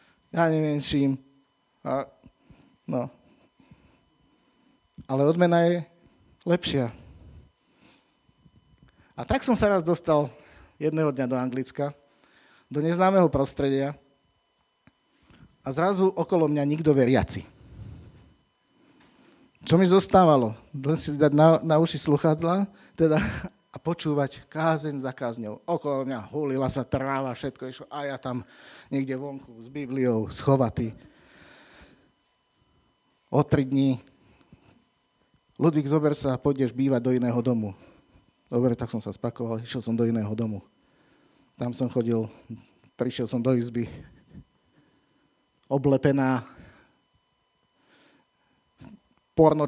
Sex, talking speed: male, 105 wpm